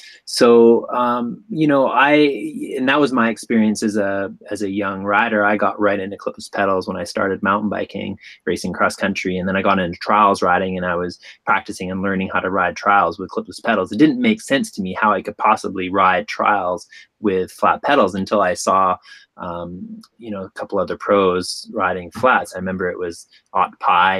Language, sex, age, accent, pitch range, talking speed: English, male, 20-39, American, 95-120 Hz, 205 wpm